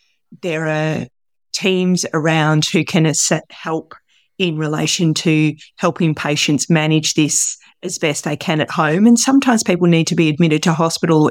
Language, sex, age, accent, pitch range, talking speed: English, female, 30-49, Australian, 160-185 Hz, 155 wpm